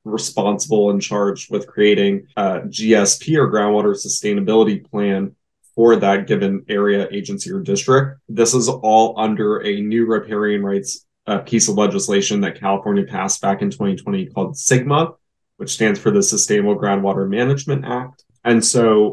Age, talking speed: 20-39, 145 wpm